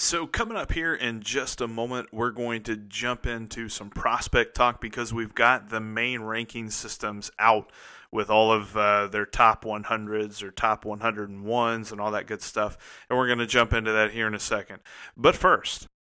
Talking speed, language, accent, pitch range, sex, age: 195 wpm, English, American, 110-130 Hz, male, 30-49